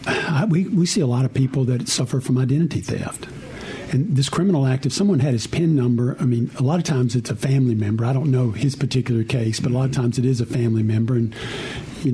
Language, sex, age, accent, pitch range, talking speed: English, male, 50-69, American, 120-140 Hz, 250 wpm